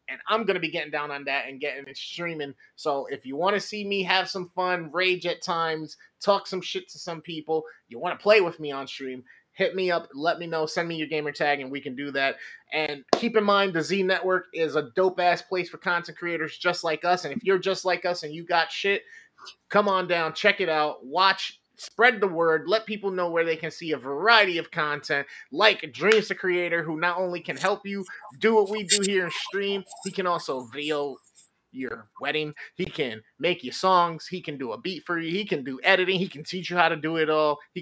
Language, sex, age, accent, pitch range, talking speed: English, male, 30-49, American, 155-185 Hz, 240 wpm